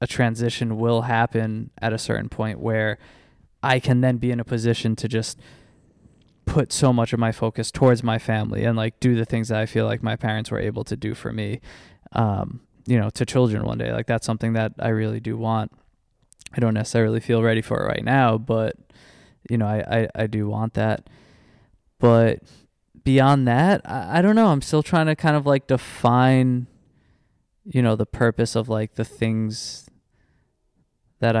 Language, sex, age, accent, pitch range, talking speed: English, male, 20-39, American, 110-120 Hz, 195 wpm